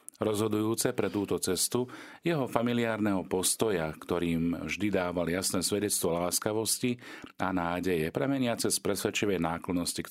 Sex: male